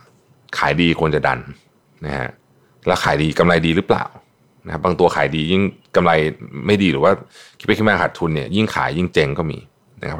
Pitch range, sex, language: 75-110 Hz, male, Thai